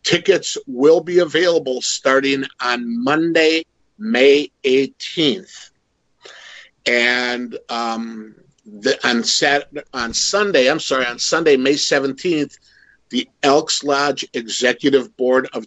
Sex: male